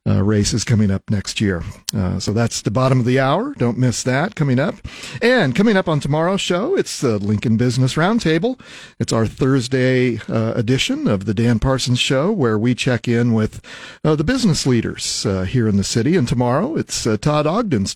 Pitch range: 110-140 Hz